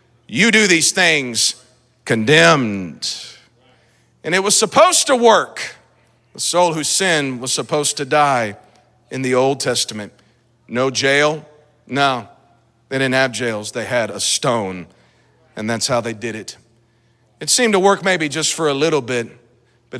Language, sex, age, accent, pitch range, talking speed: English, male, 40-59, American, 115-135 Hz, 155 wpm